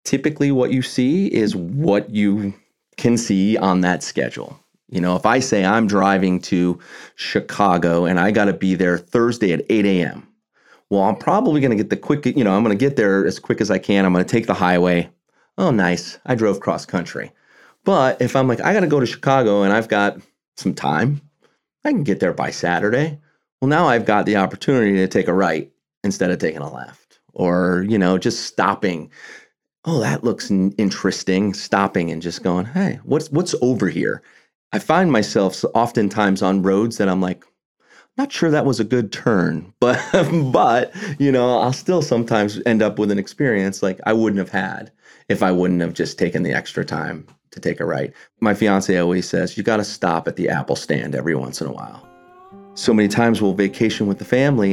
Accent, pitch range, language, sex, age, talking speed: American, 95-125 Hz, English, male, 30-49, 205 wpm